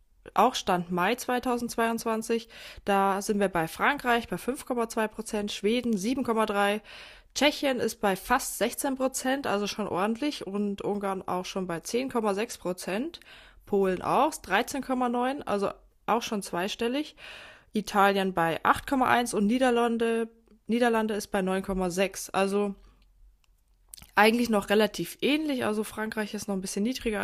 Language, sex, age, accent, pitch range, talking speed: German, female, 20-39, German, 200-245 Hz, 120 wpm